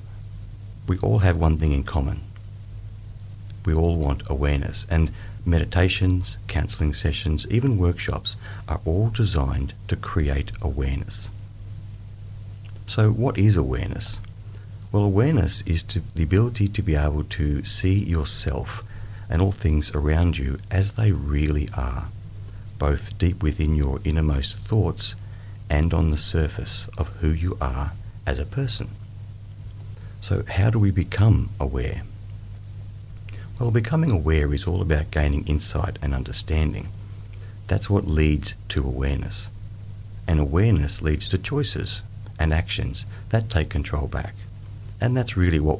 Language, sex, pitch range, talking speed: English, male, 80-105 Hz, 130 wpm